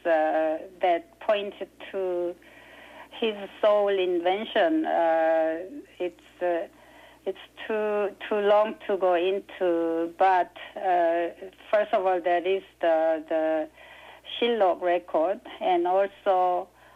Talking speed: 105 wpm